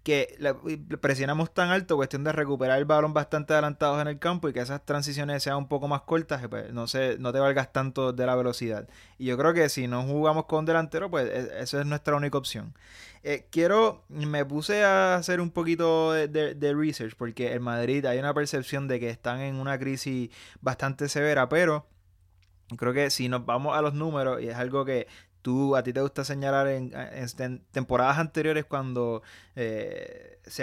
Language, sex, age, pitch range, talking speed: Spanish, male, 20-39, 125-150 Hz, 200 wpm